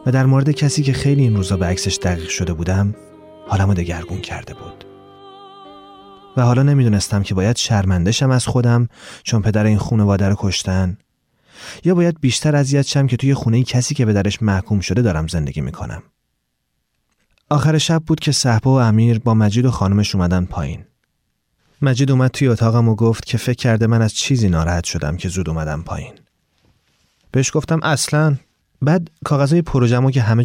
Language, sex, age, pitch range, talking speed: Persian, male, 30-49, 100-155 Hz, 175 wpm